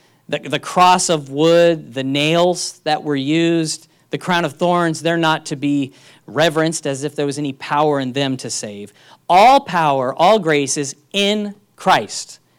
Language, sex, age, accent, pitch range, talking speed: English, male, 40-59, American, 135-180 Hz, 170 wpm